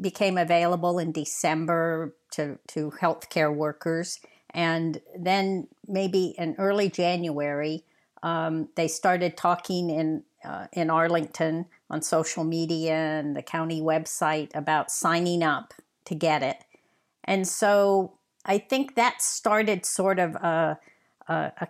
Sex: female